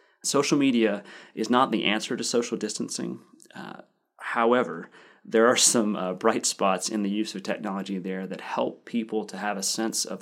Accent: American